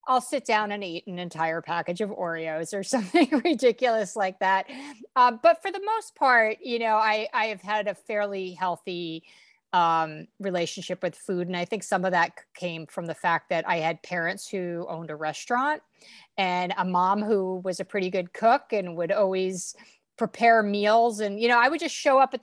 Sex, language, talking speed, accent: female, English, 200 wpm, American